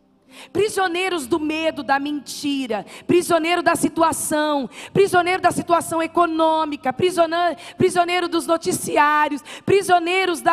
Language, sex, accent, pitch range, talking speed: Portuguese, female, Brazilian, 325-395 Hz, 105 wpm